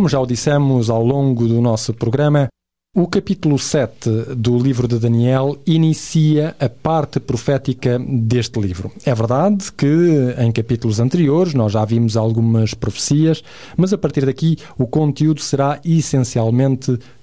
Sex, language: male, Portuguese